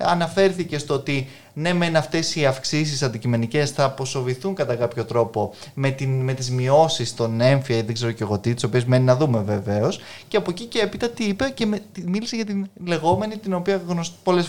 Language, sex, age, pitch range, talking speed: Greek, male, 20-39, 120-180 Hz, 190 wpm